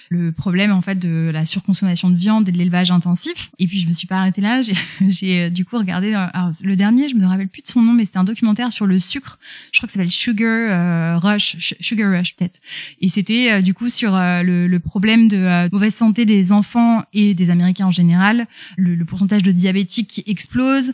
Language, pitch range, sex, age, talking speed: French, 180-225 Hz, female, 20-39, 245 wpm